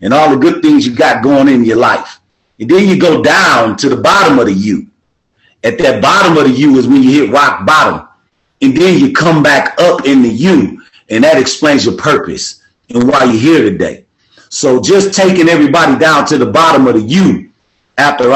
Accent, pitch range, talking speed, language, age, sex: American, 135-185 Hz, 210 wpm, English, 40-59, male